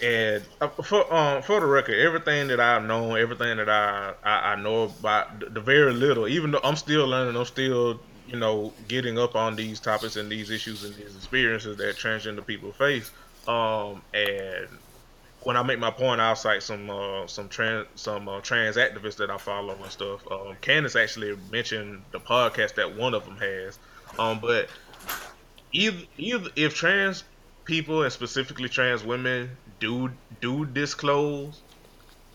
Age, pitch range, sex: 20-39, 110-130 Hz, male